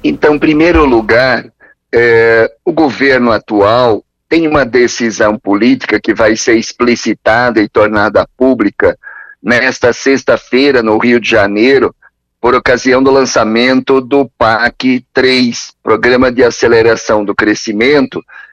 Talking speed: 115 wpm